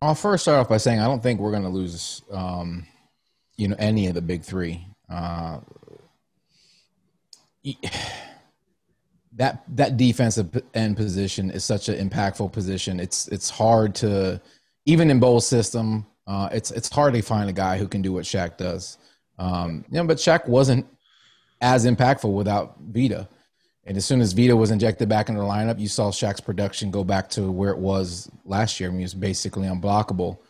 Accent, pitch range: American, 95-115 Hz